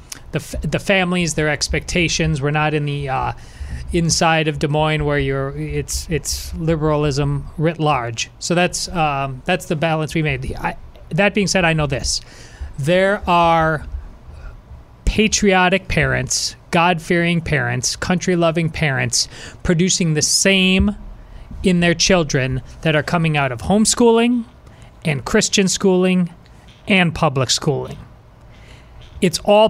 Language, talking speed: English, 125 wpm